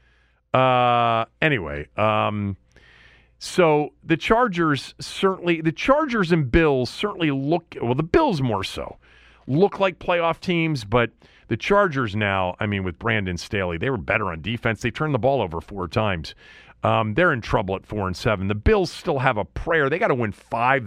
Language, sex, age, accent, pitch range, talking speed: English, male, 40-59, American, 95-135 Hz, 175 wpm